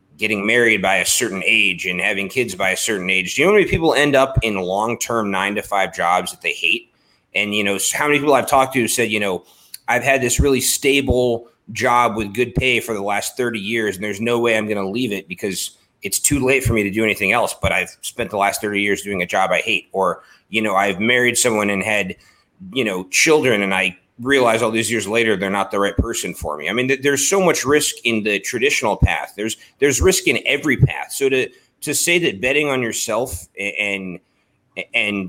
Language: English